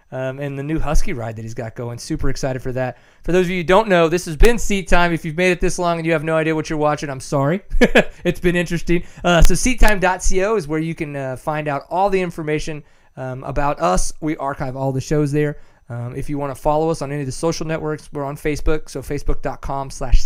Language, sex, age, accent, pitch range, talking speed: English, male, 30-49, American, 135-170 Hz, 260 wpm